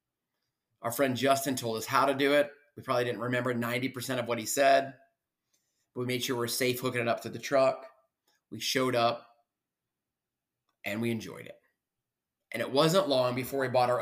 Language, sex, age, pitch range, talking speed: English, male, 30-49, 130-175 Hz, 195 wpm